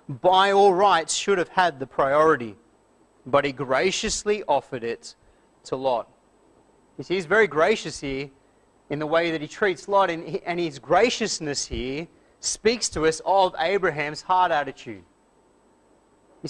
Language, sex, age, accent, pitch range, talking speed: English, male, 30-49, Australian, 155-205 Hz, 145 wpm